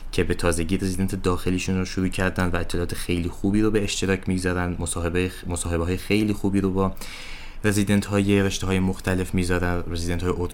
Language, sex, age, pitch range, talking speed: English, male, 20-39, 85-100 Hz, 160 wpm